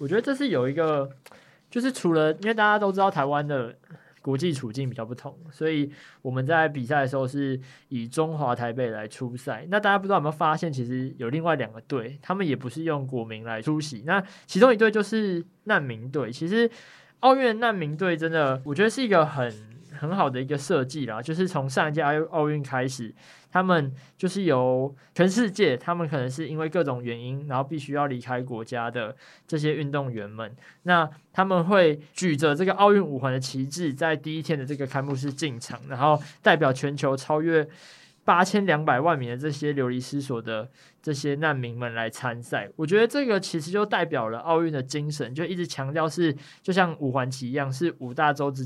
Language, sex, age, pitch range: Chinese, male, 20-39, 130-170 Hz